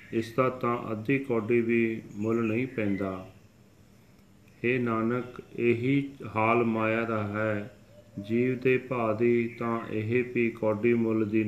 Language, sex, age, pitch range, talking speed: Punjabi, male, 40-59, 105-120 Hz, 130 wpm